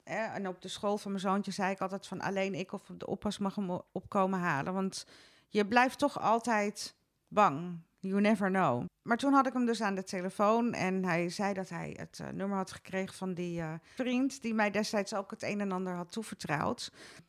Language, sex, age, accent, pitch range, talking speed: Dutch, female, 40-59, Dutch, 180-215 Hz, 215 wpm